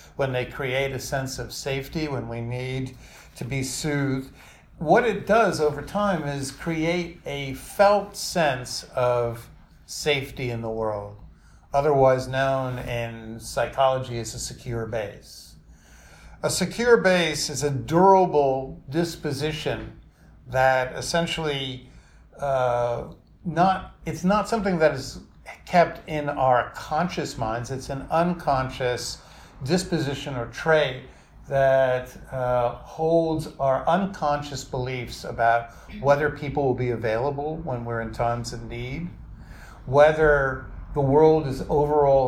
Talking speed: 120 wpm